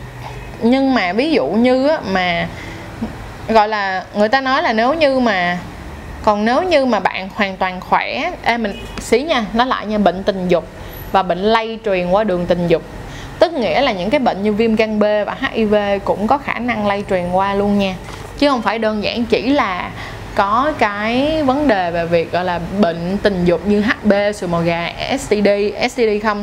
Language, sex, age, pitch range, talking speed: Vietnamese, female, 20-39, 195-255 Hz, 200 wpm